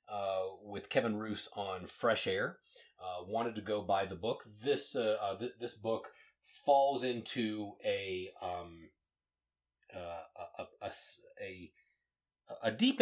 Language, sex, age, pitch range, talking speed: English, male, 30-49, 90-125 Hz, 140 wpm